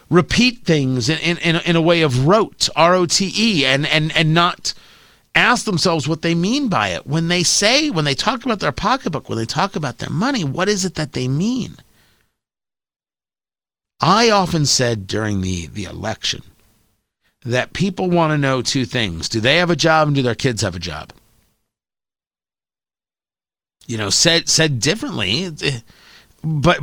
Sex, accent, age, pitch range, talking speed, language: male, American, 50-69, 135-195 Hz, 165 wpm, English